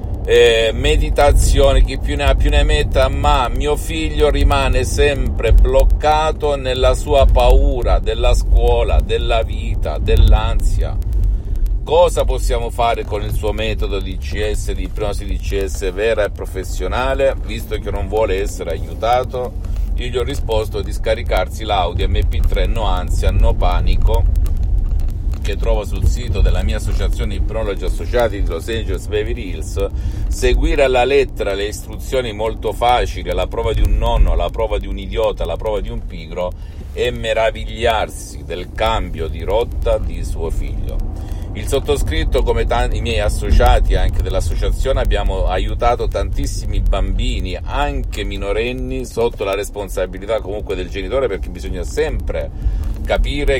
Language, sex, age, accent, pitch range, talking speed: Italian, male, 50-69, native, 85-105 Hz, 140 wpm